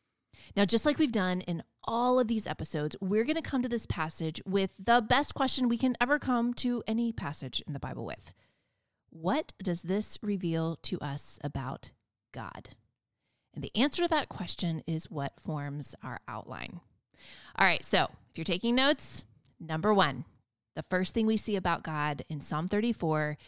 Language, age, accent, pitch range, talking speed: English, 30-49, American, 150-210 Hz, 180 wpm